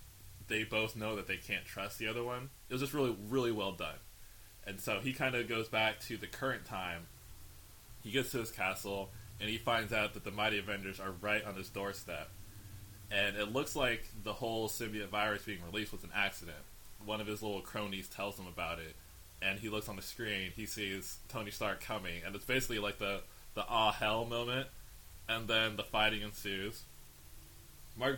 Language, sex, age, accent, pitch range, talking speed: English, male, 20-39, American, 95-110 Hz, 200 wpm